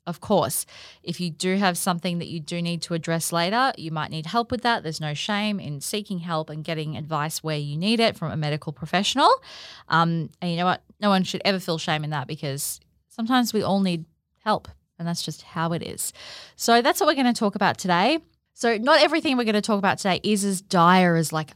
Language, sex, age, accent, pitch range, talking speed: English, female, 20-39, Australian, 165-200 Hz, 235 wpm